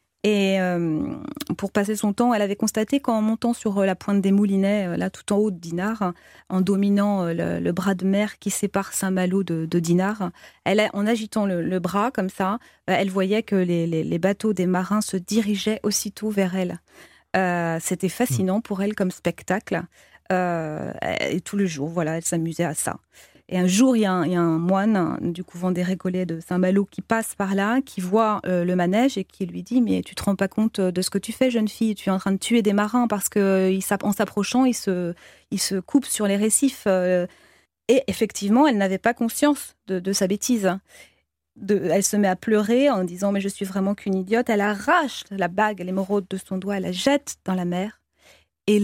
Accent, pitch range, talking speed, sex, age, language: French, 185-215 Hz, 220 wpm, female, 30-49, French